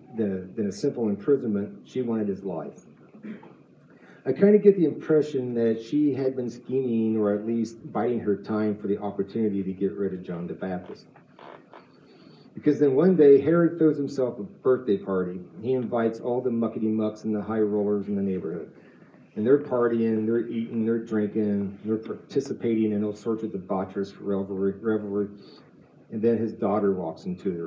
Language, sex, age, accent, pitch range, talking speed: English, male, 40-59, American, 100-125 Hz, 175 wpm